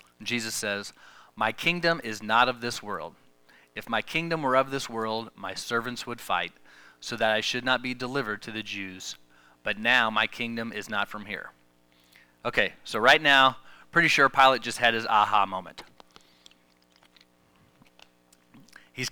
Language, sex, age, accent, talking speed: English, male, 30-49, American, 160 wpm